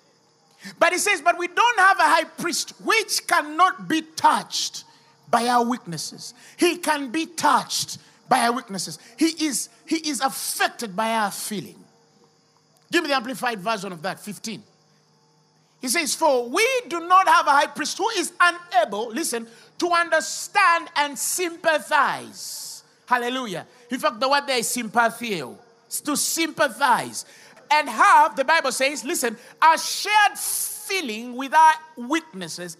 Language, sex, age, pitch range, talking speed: English, male, 50-69, 240-340 Hz, 150 wpm